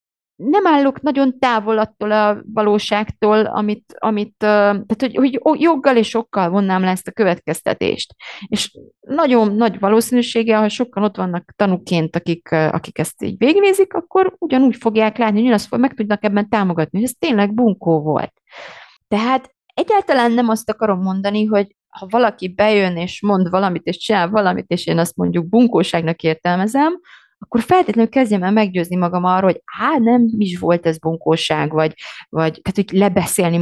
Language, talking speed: Hungarian, 155 wpm